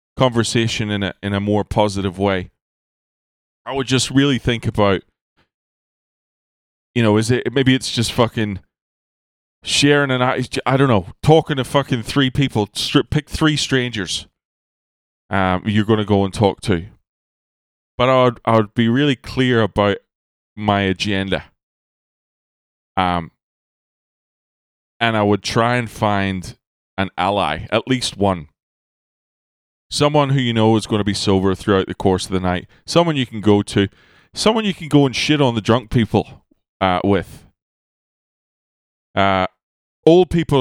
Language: English